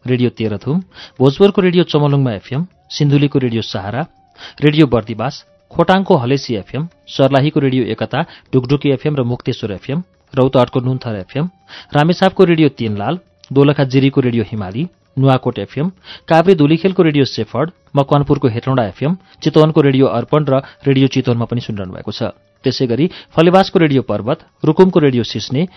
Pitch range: 125-160 Hz